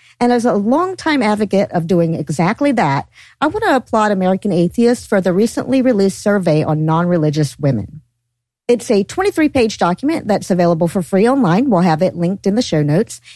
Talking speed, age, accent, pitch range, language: 180 wpm, 50-69, American, 170-245 Hz, English